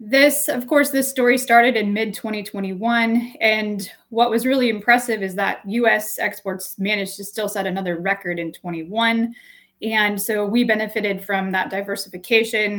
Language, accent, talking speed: English, American, 150 wpm